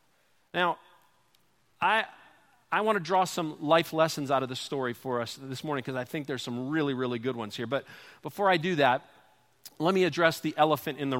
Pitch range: 130-175 Hz